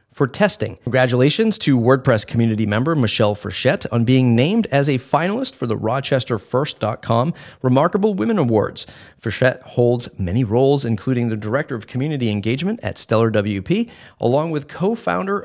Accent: American